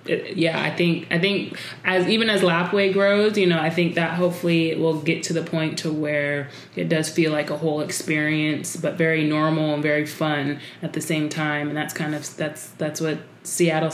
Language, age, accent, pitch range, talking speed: English, 20-39, American, 155-185 Hz, 210 wpm